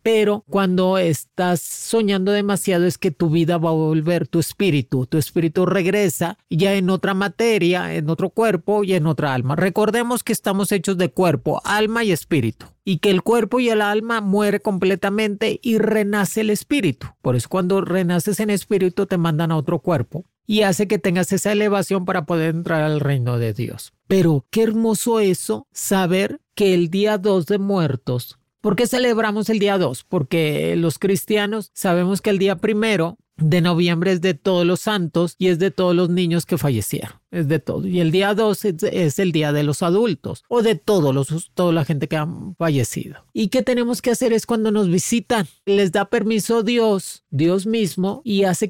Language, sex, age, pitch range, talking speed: Spanish, male, 40-59, 160-205 Hz, 190 wpm